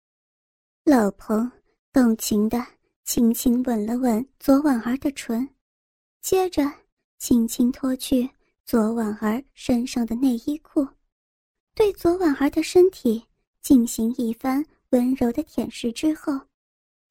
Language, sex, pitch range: Chinese, male, 240-315 Hz